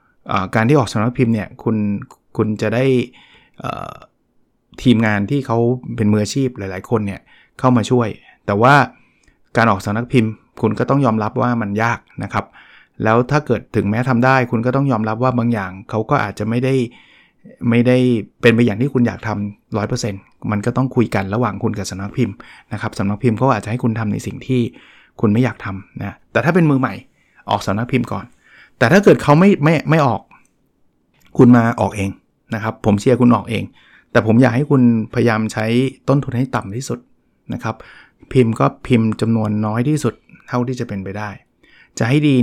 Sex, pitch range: male, 105-125 Hz